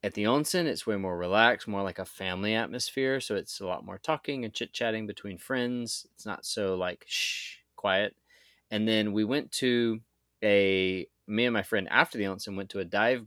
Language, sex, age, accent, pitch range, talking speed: English, male, 20-39, American, 95-115 Hz, 205 wpm